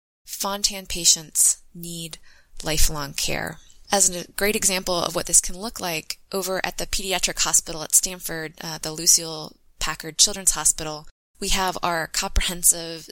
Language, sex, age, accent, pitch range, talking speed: English, female, 20-39, American, 160-190 Hz, 145 wpm